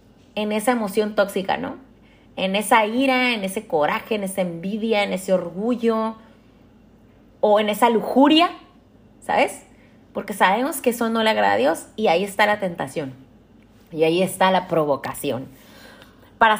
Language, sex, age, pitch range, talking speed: Spanish, female, 30-49, 185-240 Hz, 150 wpm